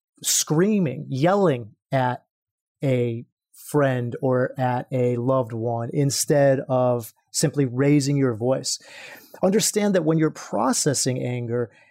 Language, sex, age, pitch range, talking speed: English, male, 30-49, 130-170 Hz, 110 wpm